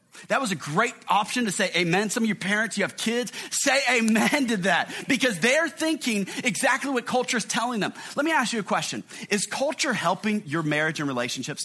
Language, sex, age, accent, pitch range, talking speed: English, male, 30-49, American, 195-255 Hz, 210 wpm